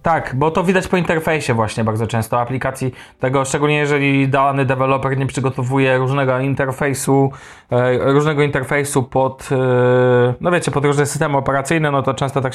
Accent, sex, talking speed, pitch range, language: native, male, 155 wpm, 125-150 Hz, Polish